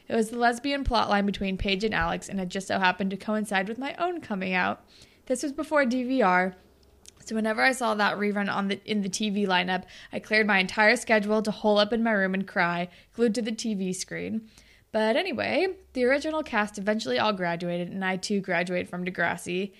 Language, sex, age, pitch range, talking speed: English, female, 20-39, 185-225 Hz, 205 wpm